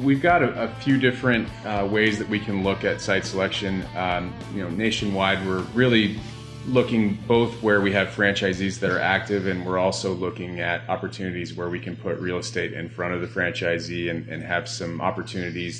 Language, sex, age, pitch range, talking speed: English, male, 30-49, 90-110 Hz, 200 wpm